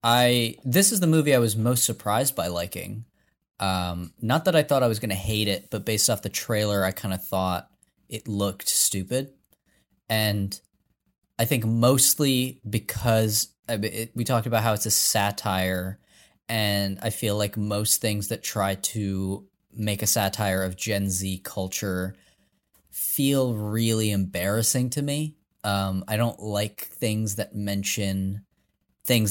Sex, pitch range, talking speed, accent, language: male, 95-120 Hz, 155 wpm, American, English